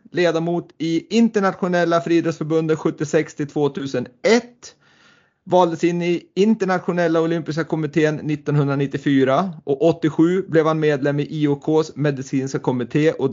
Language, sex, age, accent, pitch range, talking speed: Swedish, male, 30-49, native, 145-170 Hz, 100 wpm